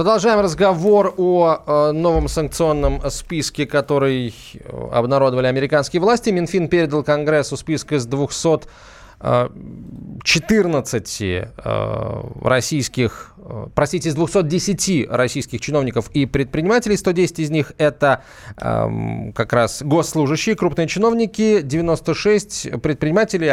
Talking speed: 90 wpm